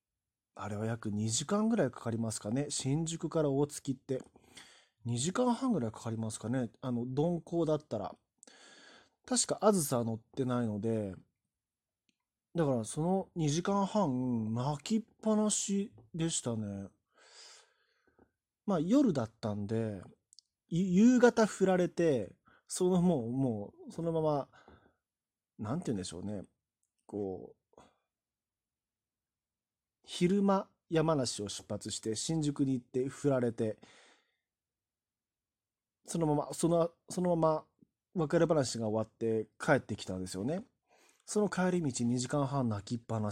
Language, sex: Japanese, male